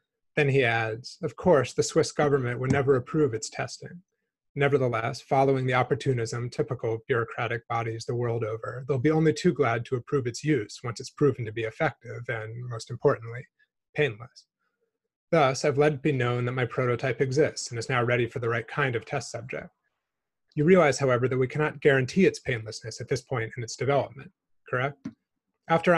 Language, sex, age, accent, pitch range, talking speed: English, male, 30-49, American, 120-150 Hz, 185 wpm